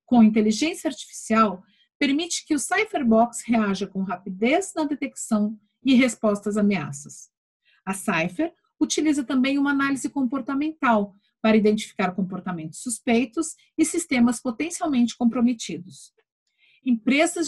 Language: English